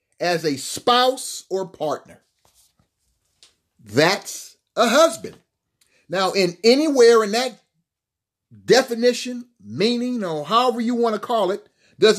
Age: 40-59